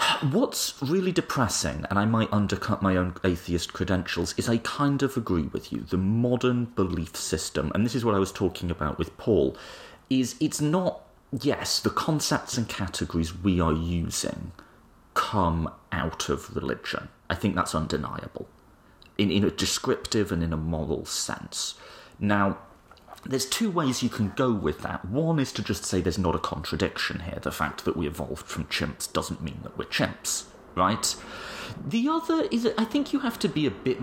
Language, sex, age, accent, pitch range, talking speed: English, male, 30-49, British, 90-135 Hz, 190 wpm